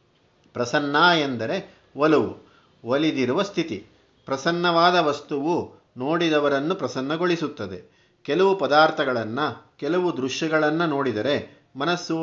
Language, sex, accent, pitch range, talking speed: Kannada, male, native, 125-160 Hz, 75 wpm